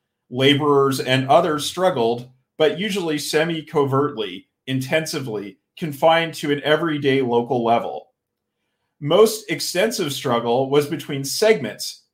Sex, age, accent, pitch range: male, 40-59, American, 125-160 Hz